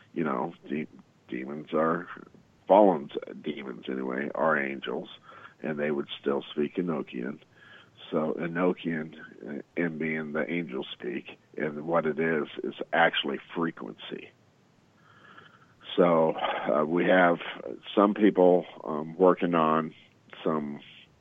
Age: 50-69